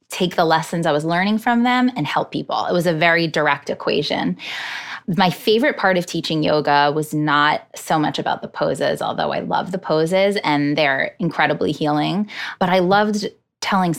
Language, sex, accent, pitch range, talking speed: English, female, American, 155-190 Hz, 185 wpm